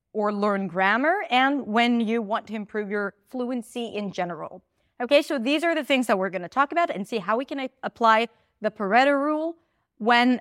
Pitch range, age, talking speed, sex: 205-270 Hz, 30-49, 195 wpm, female